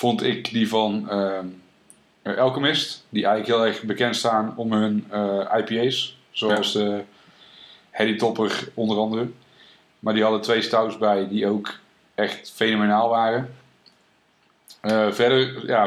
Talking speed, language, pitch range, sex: 135 wpm, Dutch, 105-125 Hz, male